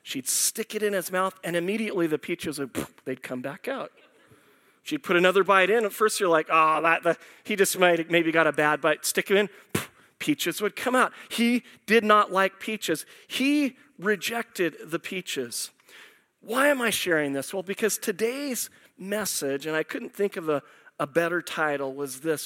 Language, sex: English, male